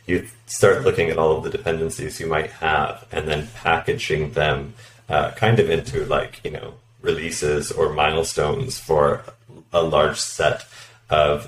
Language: English